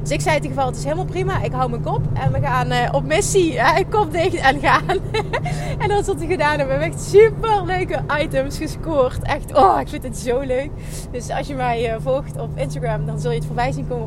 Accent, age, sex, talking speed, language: Dutch, 20-39, female, 255 wpm, Dutch